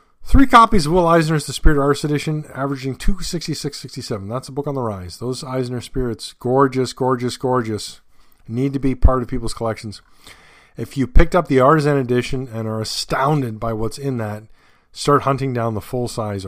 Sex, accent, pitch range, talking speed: male, American, 110-145 Hz, 180 wpm